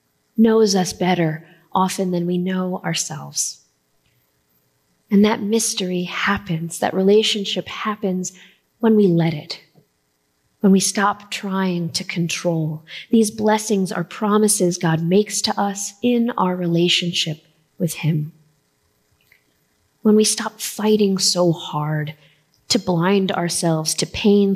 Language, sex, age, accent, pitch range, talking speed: English, female, 20-39, American, 160-200 Hz, 120 wpm